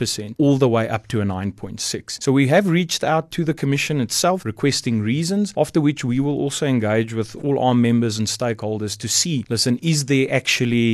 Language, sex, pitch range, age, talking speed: English, male, 110-135 Hz, 30-49, 195 wpm